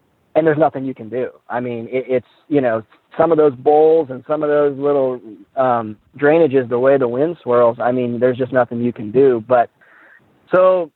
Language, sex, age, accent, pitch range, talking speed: English, male, 30-49, American, 120-145 Hz, 205 wpm